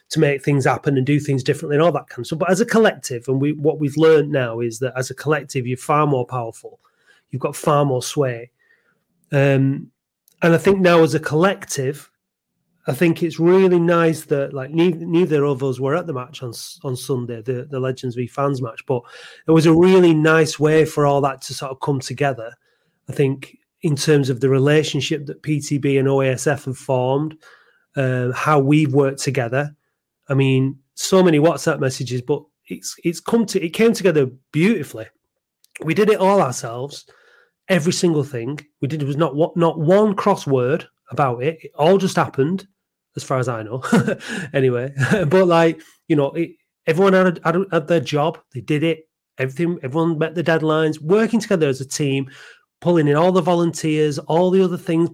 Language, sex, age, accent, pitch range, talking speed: English, male, 30-49, British, 135-170 Hz, 195 wpm